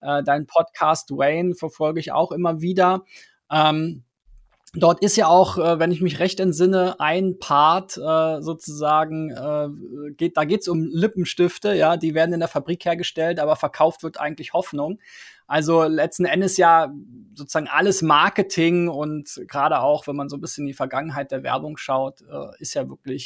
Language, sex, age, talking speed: German, male, 20-39, 170 wpm